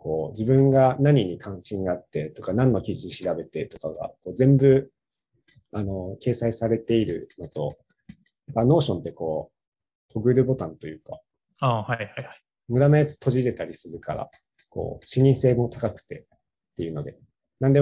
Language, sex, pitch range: Japanese, male, 105-130 Hz